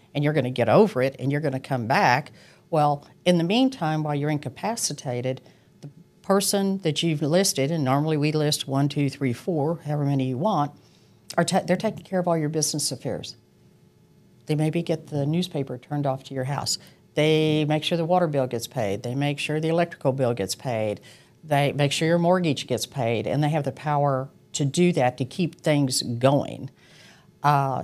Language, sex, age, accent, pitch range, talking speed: English, female, 50-69, American, 135-170 Hz, 195 wpm